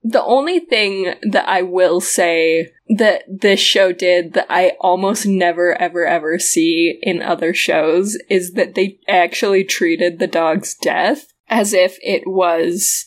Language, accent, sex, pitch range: English, American, female, 175-230 Hz